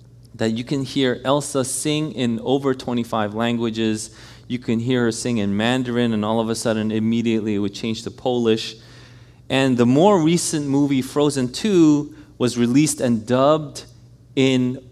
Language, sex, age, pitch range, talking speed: English, male, 30-49, 115-140 Hz, 160 wpm